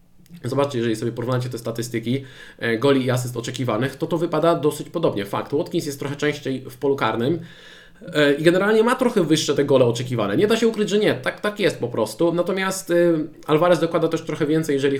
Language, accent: Polish, native